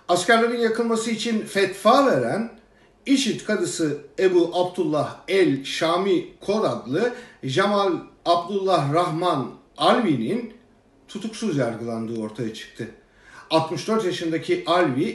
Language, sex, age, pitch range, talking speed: German, male, 50-69, 160-235 Hz, 95 wpm